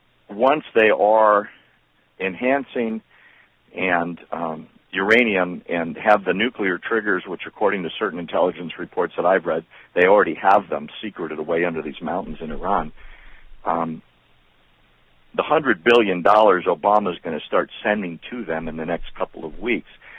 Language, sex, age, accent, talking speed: English, male, 50-69, American, 145 wpm